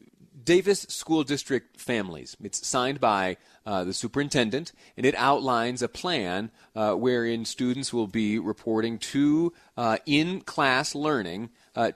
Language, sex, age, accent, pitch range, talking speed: English, male, 30-49, American, 105-130 Hz, 130 wpm